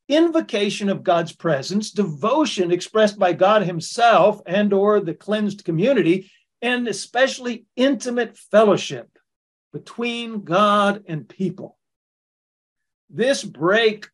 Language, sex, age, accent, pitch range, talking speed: English, male, 50-69, American, 170-215 Hz, 100 wpm